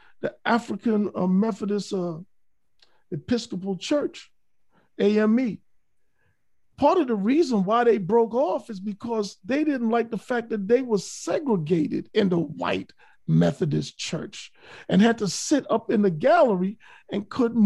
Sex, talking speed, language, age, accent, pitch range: male, 140 wpm, English, 50-69, American, 185-235 Hz